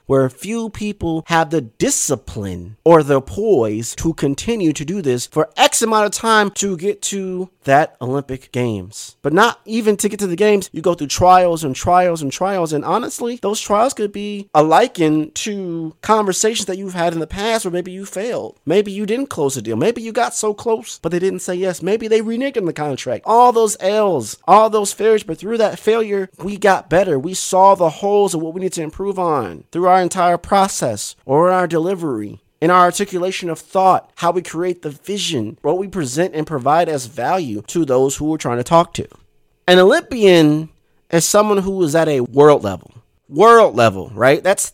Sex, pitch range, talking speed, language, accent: male, 150-205 Hz, 205 wpm, English, American